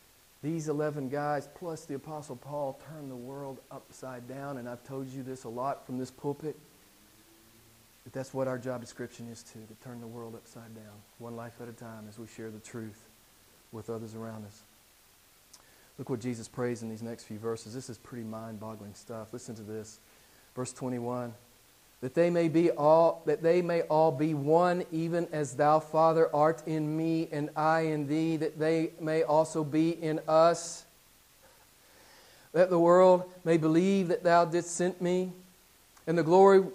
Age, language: 40-59, English